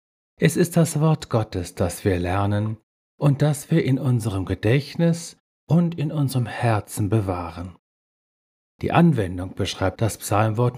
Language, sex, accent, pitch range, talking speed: German, male, German, 100-135 Hz, 135 wpm